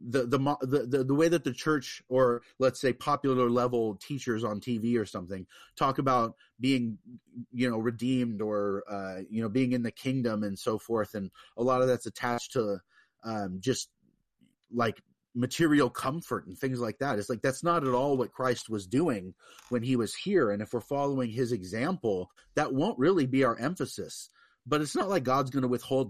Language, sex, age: English, male, 30-49